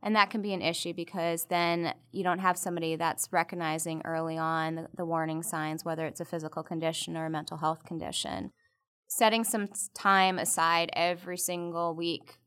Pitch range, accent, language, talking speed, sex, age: 165-180 Hz, American, English, 180 wpm, female, 20-39